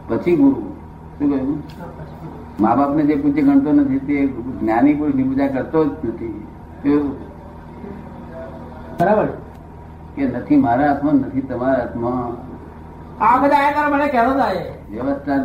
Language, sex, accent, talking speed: Gujarati, male, native, 45 wpm